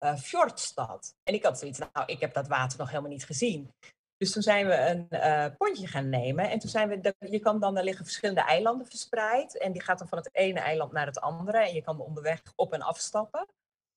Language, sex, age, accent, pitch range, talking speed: Dutch, female, 40-59, Dutch, 155-230 Hz, 235 wpm